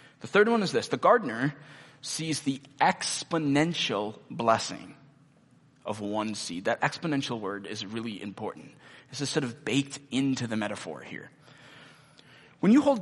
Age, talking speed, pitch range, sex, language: 20-39, 145 wpm, 125-165 Hz, male, English